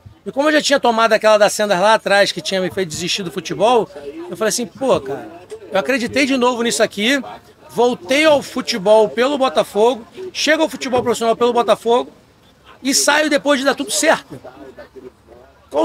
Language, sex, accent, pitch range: Portuguese, male, Brazilian, 185-235 Hz